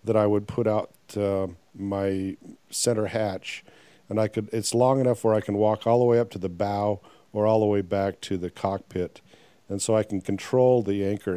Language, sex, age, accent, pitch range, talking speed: English, male, 50-69, American, 90-110 Hz, 210 wpm